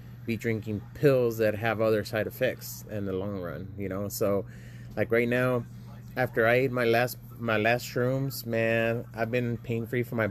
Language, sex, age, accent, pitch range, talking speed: English, male, 30-49, American, 105-120 Hz, 185 wpm